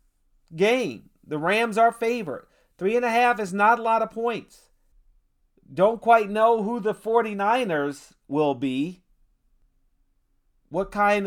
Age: 40-59